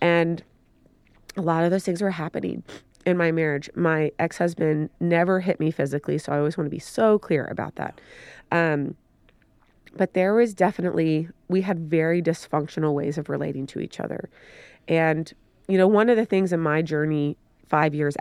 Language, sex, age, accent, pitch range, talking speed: English, female, 30-49, American, 155-195 Hz, 180 wpm